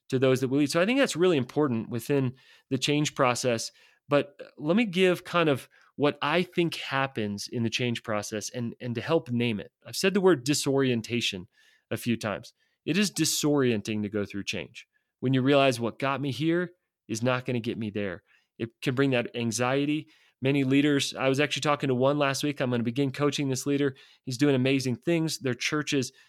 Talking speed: 210 wpm